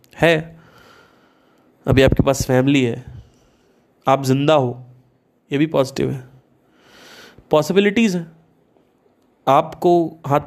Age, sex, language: 30-49, male, Hindi